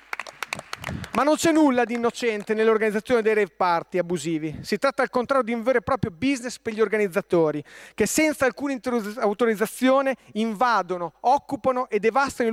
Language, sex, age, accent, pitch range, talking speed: Italian, male, 40-59, native, 210-260 Hz, 165 wpm